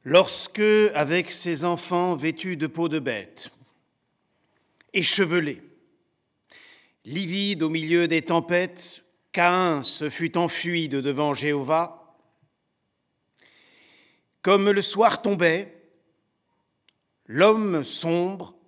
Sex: male